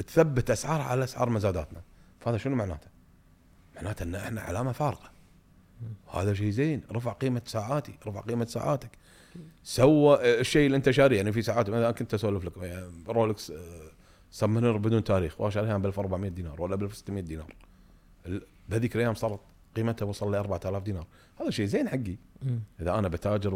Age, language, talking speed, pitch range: 40-59, English, 160 wpm, 95-145 Hz